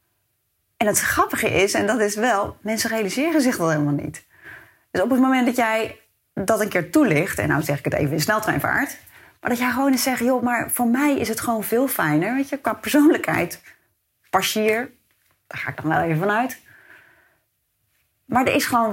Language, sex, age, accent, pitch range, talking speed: Dutch, female, 30-49, Dutch, 170-255 Hz, 205 wpm